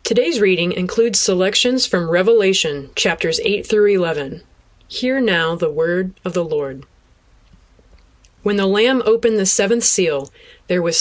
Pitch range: 175-230 Hz